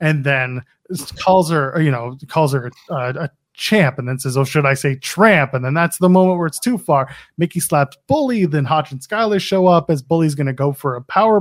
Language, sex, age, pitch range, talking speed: English, male, 20-39, 140-195 Hz, 240 wpm